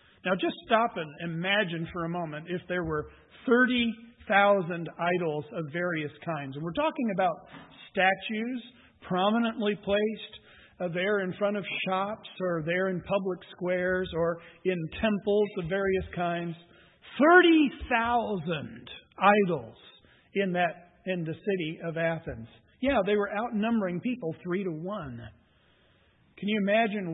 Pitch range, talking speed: 165-210 Hz, 130 wpm